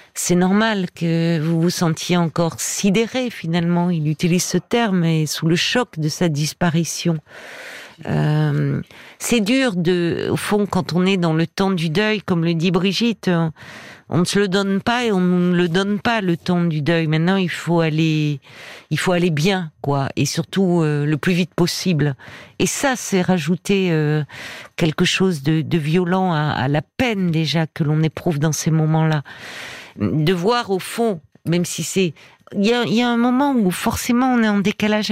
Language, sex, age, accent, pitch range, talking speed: French, female, 50-69, French, 165-205 Hz, 190 wpm